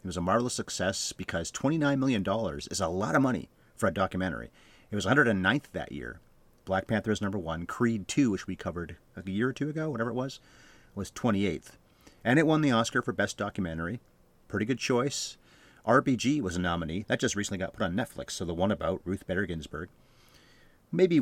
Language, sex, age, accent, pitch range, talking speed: English, male, 40-59, American, 95-120 Hz, 200 wpm